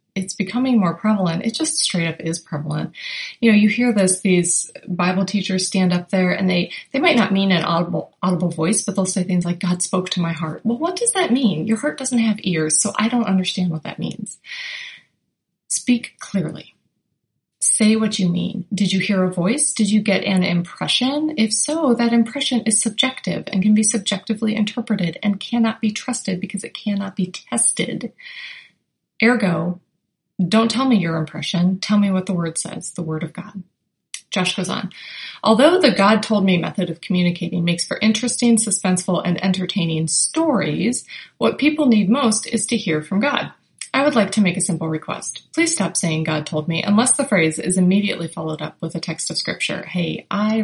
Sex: female